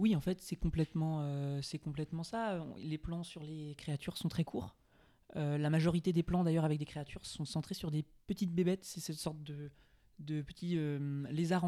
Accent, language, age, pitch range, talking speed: French, French, 20-39, 150-180 Hz, 205 wpm